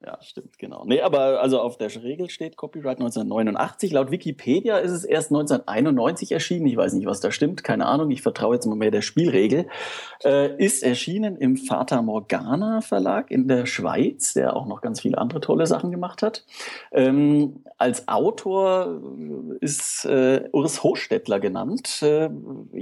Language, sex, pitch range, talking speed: German, male, 125-200 Hz, 165 wpm